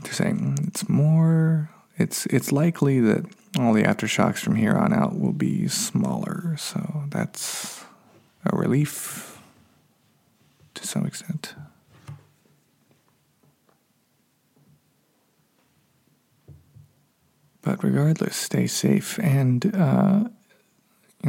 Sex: male